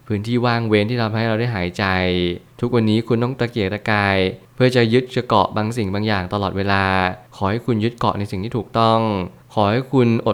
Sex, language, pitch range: male, Thai, 100-120 Hz